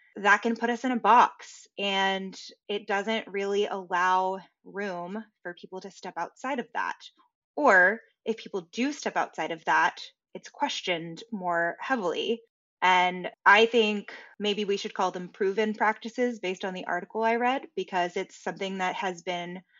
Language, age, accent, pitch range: English, 20-39, American, 185-225 Hz